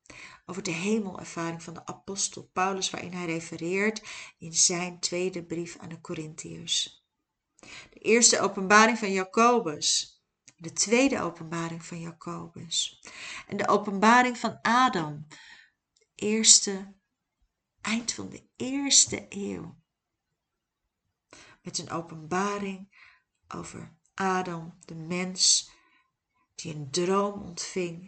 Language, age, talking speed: Dutch, 40-59, 105 wpm